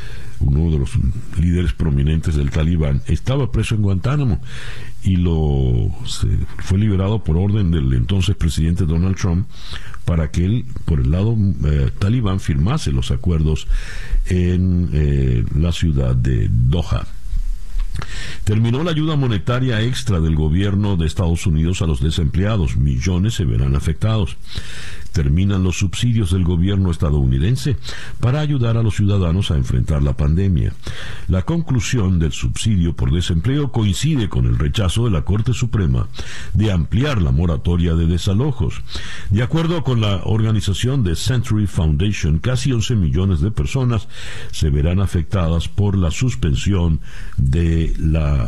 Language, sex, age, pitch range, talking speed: Spanish, male, 60-79, 80-110 Hz, 140 wpm